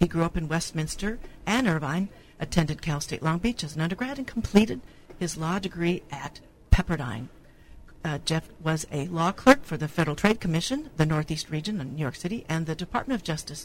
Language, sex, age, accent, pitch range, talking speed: English, female, 60-79, American, 155-195 Hz, 200 wpm